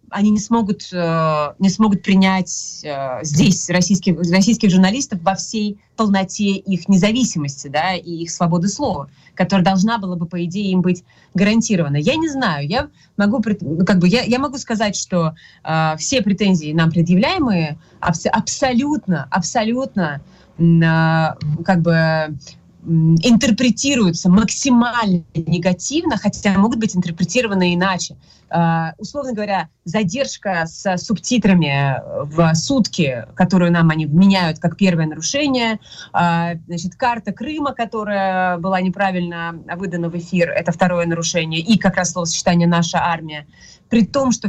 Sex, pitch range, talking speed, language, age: female, 170-225 Hz, 130 wpm, Russian, 30-49